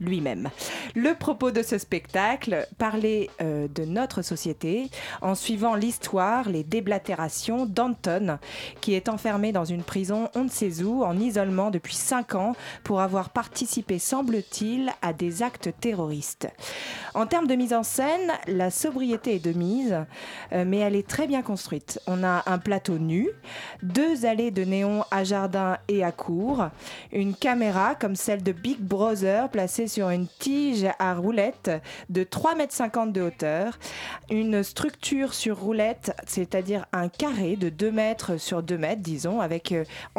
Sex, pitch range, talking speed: female, 180-235 Hz, 160 wpm